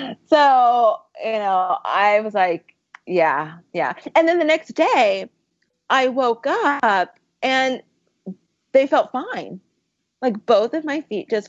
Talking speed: 135 wpm